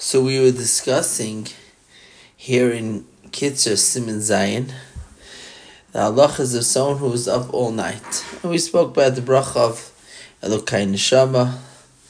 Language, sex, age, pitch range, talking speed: English, male, 30-49, 110-135 Hz, 145 wpm